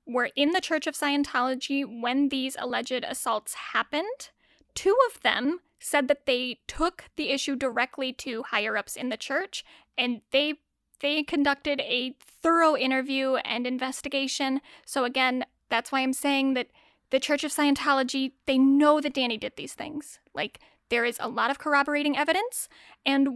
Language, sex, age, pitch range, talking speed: English, female, 10-29, 260-315 Hz, 160 wpm